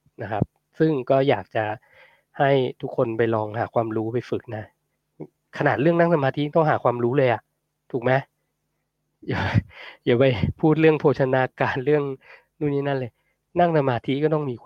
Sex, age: male, 20-39